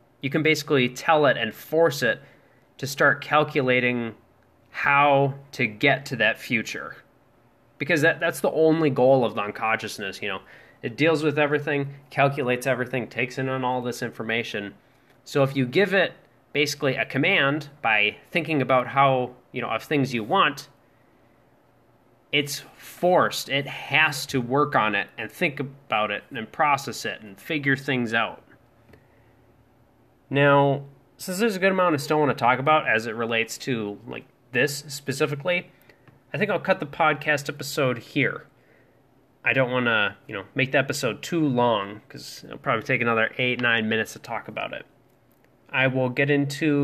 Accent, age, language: American, 20-39, English